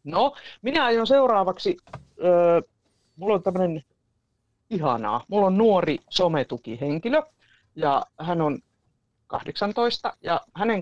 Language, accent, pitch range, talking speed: Finnish, native, 135-205 Hz, 100 wpm